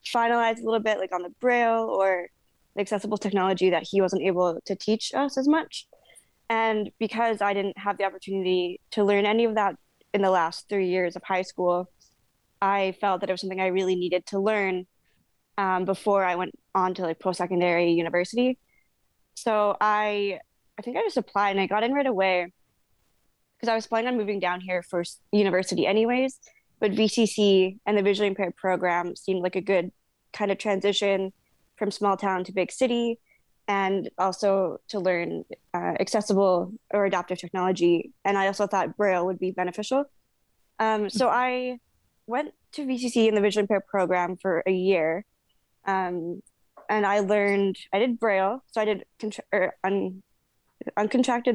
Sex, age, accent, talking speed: female, 20-39, American, 170 wpm